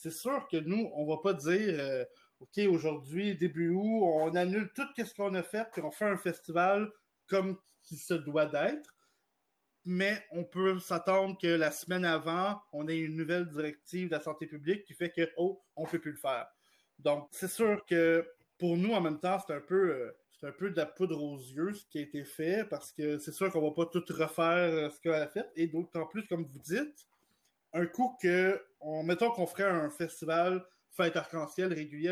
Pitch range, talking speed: 155-195 Hz, 220 wpm